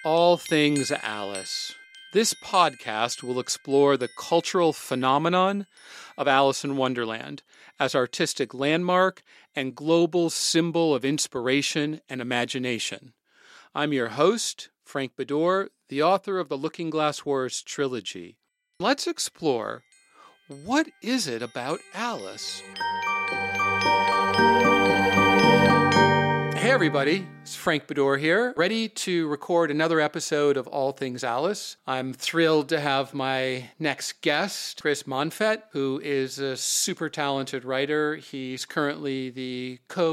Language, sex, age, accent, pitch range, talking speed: English, male, 40-59, American, 130-170 Hz, 115 wpm